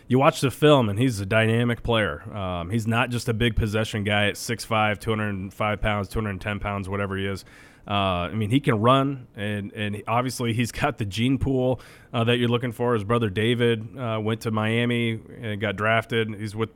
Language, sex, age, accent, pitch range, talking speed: English, male, 30-49, American, 105-115 Hz, 215 wpm